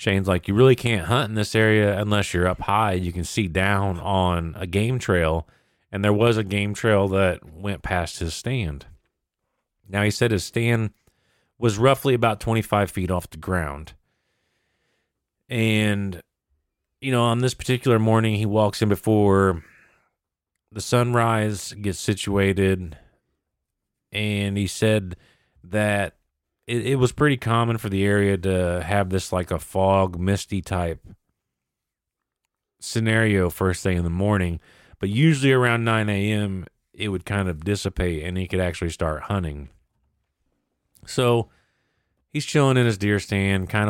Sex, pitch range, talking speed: male, 90-110 Hz, 150 wpm